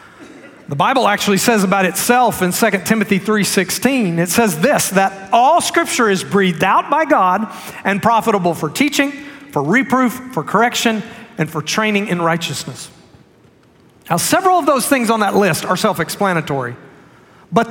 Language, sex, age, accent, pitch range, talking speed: English, male, 40-59, American, 180-240 Hz, 155 wpm